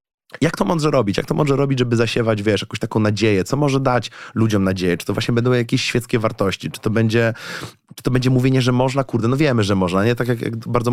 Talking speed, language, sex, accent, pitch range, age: 245 wpm, Polish, male, native, 100-125 Hz, 20-39